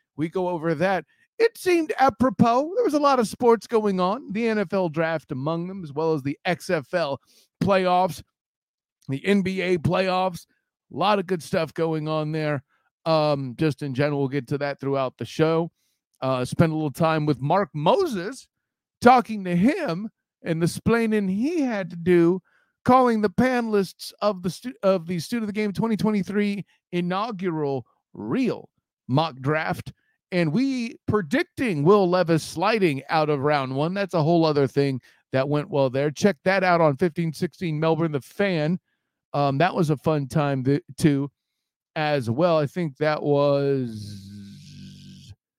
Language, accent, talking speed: English, American, 160 wpm